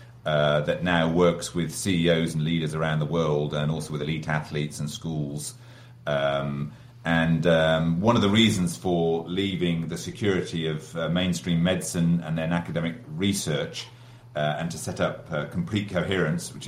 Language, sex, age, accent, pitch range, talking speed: English, male, 40-59, British, 80-100 Hz, 165 wpm